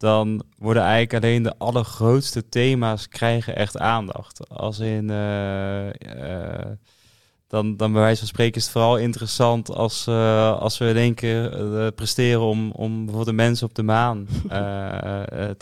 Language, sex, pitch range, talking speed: English, male, 105-115 Hz, 165 wpm